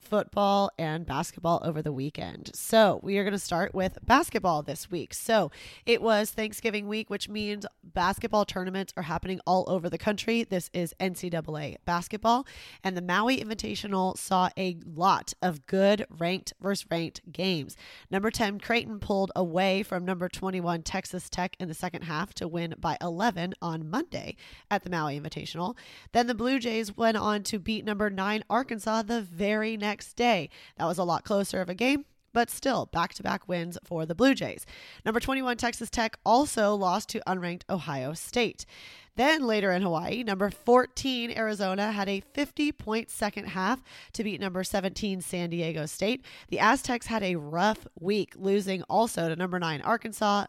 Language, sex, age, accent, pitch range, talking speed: English, female, 20-39, American, 175-220 Hz, 170 wpm